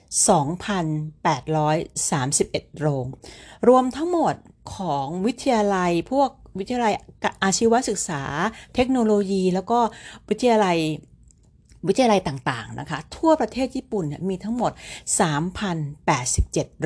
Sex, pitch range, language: female, 145-200 Hz, Thai